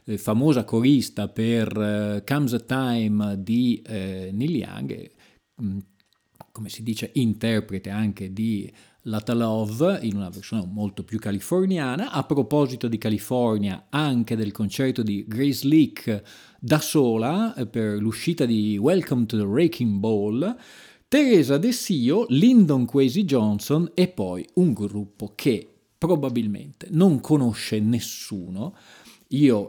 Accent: native